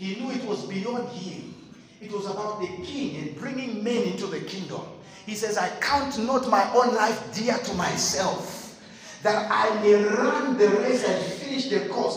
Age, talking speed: 50-69, 185 wpm